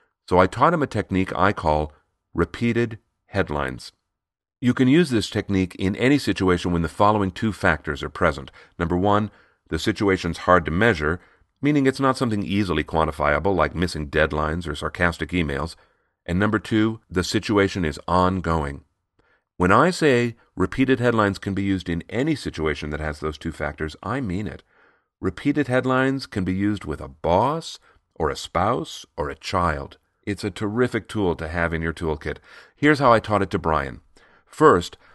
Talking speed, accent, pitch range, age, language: 170 wpm, American, 85-115 Hz, 40-59, English